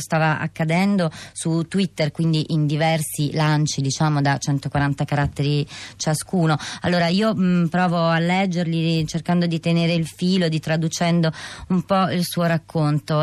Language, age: Italian, 20-39